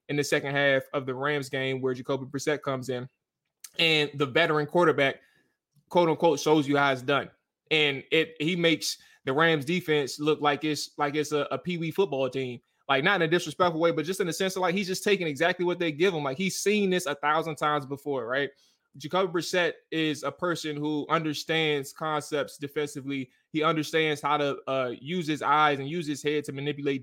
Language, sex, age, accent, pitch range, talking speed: English, male, 20-39, American, 140-170 Hz, 210 wpm